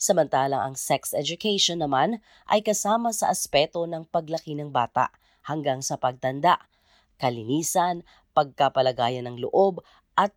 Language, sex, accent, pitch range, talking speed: Filipino, female, native, 140-180 Hz, 120 wpm